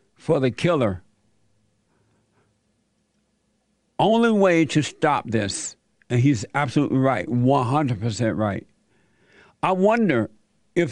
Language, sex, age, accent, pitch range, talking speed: English, male, 60-79, American, 125-165 Hz, 95 wpm